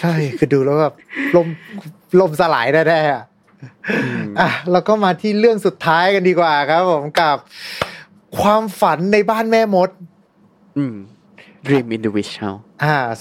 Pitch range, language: 130-180 Hz, Thai